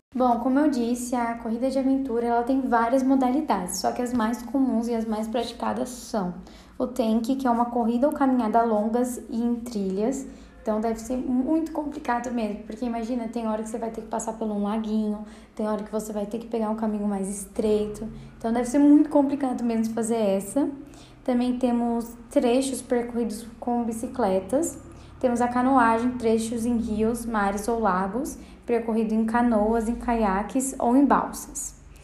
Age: 10-29